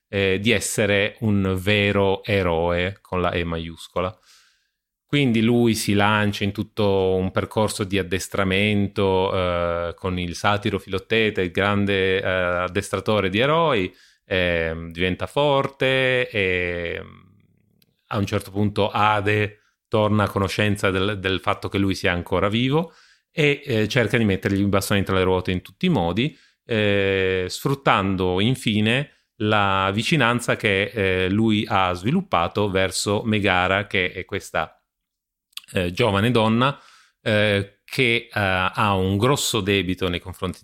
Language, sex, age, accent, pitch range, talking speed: Italian, male, 30-49, native, 95-110 Hz, 135 wpm